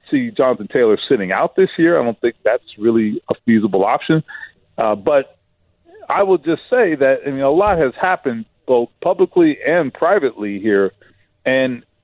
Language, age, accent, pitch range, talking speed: English, 40-59, American, 135-195 Hz, 170 wpm